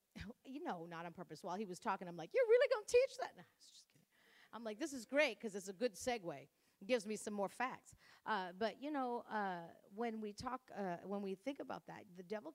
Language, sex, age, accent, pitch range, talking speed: English, female, 50-69, American, 180-240 Hz, 250 wpm